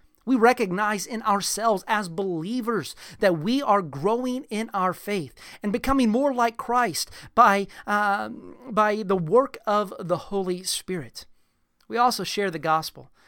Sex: male